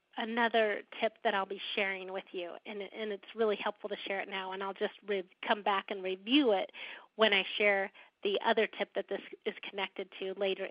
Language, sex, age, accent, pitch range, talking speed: English, female, 40-59, American, 200-260 Hz, 205 wpm